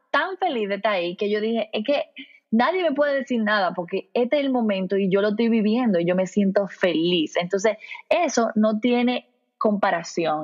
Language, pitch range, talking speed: Spanish, 195-260 Hz, 200 wpm